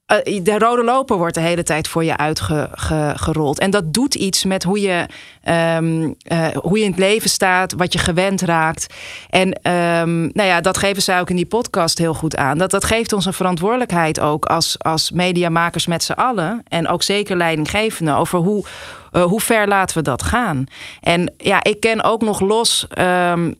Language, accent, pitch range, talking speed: Dutch, Dutch, 165-195 Hz, 200 wpm